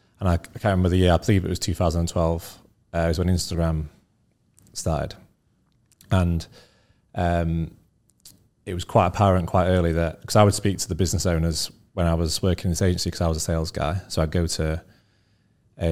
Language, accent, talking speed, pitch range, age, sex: English, British, 200 wpm, 85-95 Hz, 30-49, male